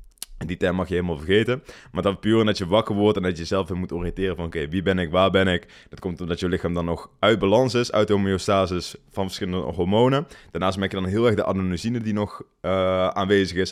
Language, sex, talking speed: Dutch, male, 260 wpm